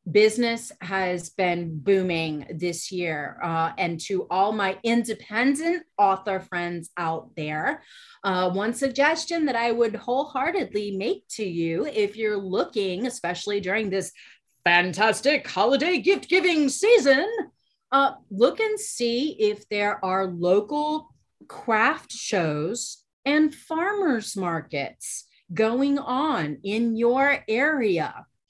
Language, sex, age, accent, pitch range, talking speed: English, female, 30-49, American, 185-265 Hz, 115 wpm